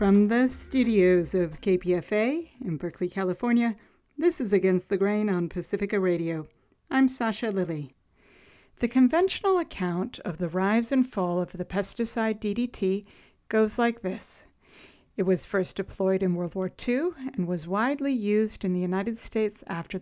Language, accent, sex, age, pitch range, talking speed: English, American, female, 60-79, 185-230 Hz, 155 wpm